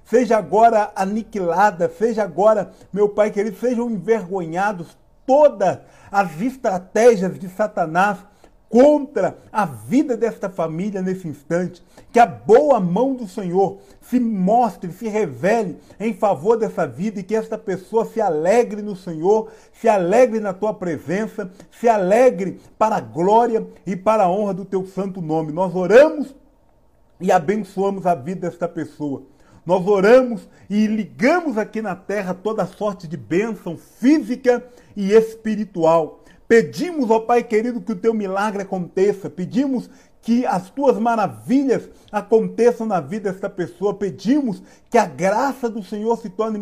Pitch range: 185-230 Hz